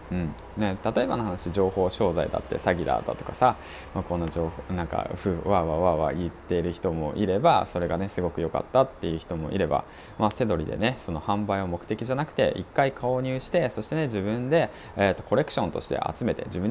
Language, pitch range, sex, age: Japanese, 85-115 Hz, male, 20-39